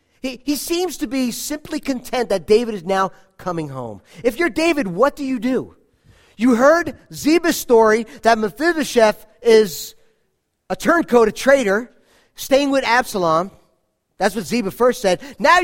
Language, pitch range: English, 180-270 Hz